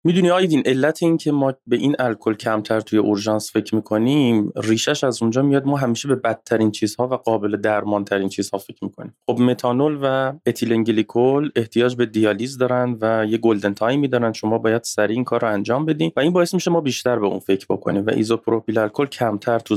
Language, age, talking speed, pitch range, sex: Persian, 20-39, 190 wpm, 105-135 Hz, male